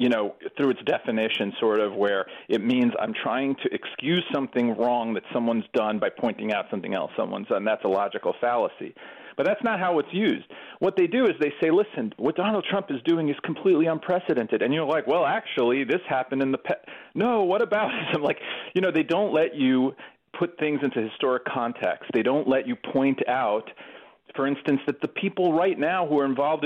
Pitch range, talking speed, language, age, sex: 130-210 Hz, 210 wpm, English, 40-59, male